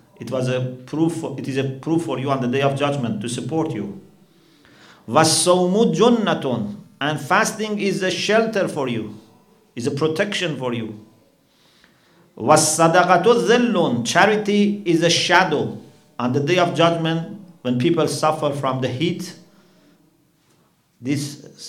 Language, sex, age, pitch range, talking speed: English, male, 50-69, 135-180 Hz, 125 wpm